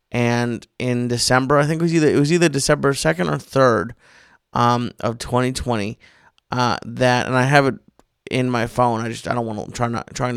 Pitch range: 120-130 Hz